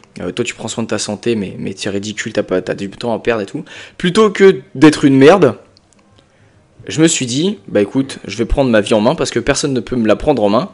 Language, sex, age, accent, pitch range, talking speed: French, male, 20-39, French, 105-130 Hz, 270 wpm